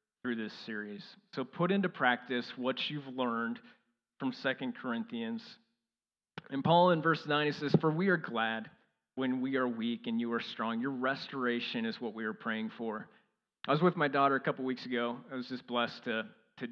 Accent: American